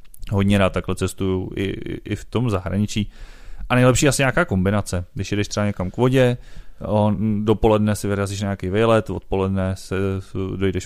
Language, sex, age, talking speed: Czech, male, 30-49, 155 wpm